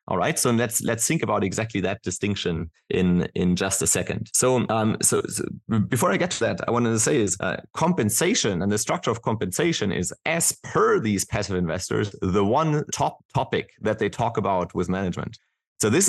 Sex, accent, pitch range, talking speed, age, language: male, German, 95-120 Hz, 200 wpm, 30-49, English